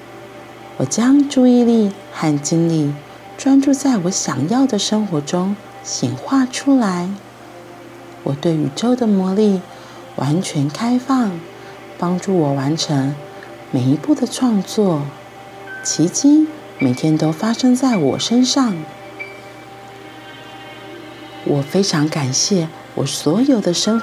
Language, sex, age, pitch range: Chinese, female, 40-59, 145-230 Hz